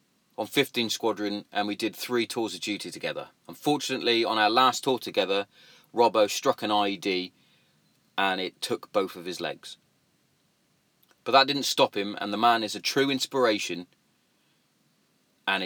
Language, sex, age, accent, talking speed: English, male, 30-49, British, 155 wpm